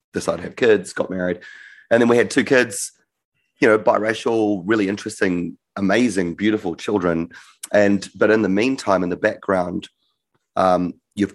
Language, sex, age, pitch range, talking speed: English, male, 30-49, 90-105 Hz, 160 wpm